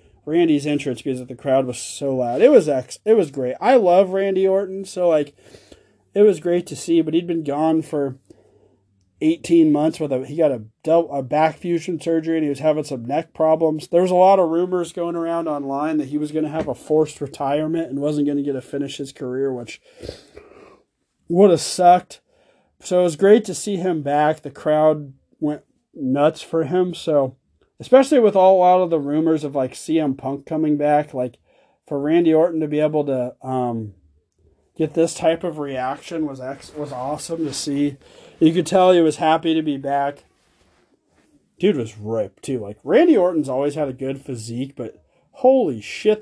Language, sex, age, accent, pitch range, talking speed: English, male, 30-49, American, 135-170 Hz, 195 wpm